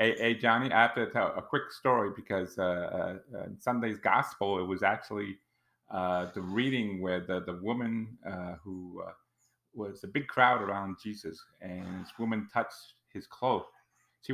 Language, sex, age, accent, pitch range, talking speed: English, male, 30-49, American, 95-120 Hz, 170 wpm